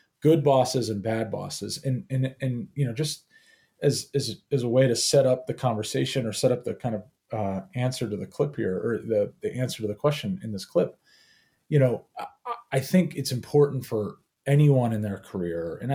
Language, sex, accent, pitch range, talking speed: English, male, American, 110-140 Hz, 210 wpm